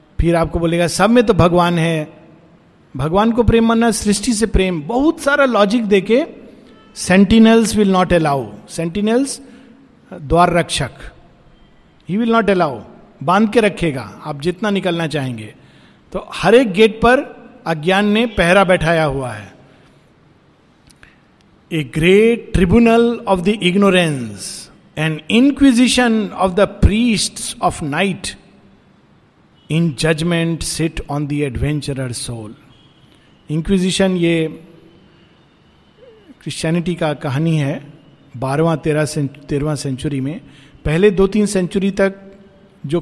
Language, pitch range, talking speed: Hindi, 160-210 Hz, 120 wpm